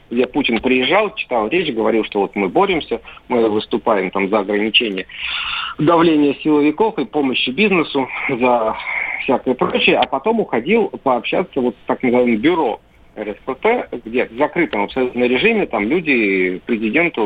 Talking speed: 145 wpm